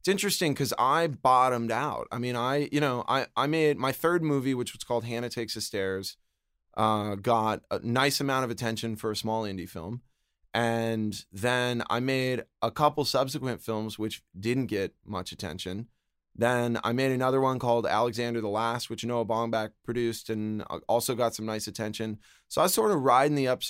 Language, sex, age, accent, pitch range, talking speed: English, male, 20-39, American, 105-130 Hz, 190 wpm